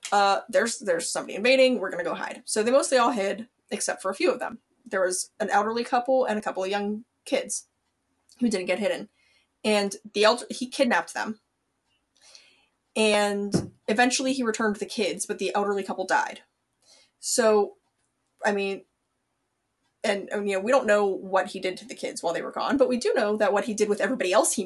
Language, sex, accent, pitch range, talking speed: English, female, American, 195-250 Hz, 205 wpm